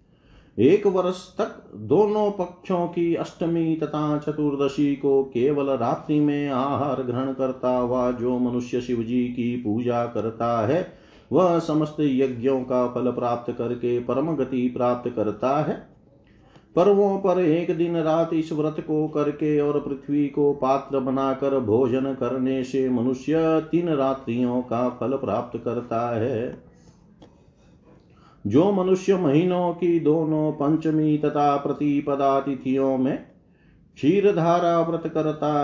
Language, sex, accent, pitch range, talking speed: Hindi, male, native, 125-155 Hz, 125 wpm